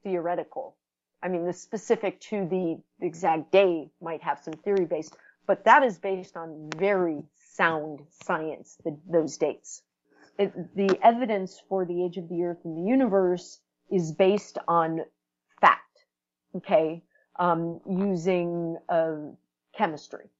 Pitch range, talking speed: 160-195 Hz, 130 wpm